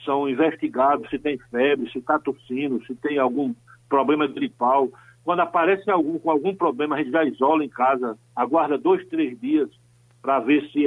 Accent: Brazilian